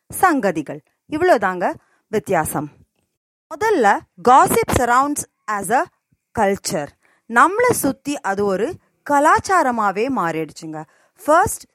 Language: Tamil